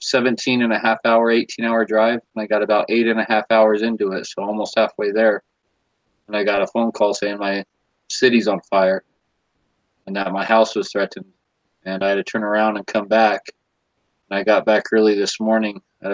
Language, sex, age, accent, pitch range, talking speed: English, male, 20-39, American, 95-110 Hz, 210 wpm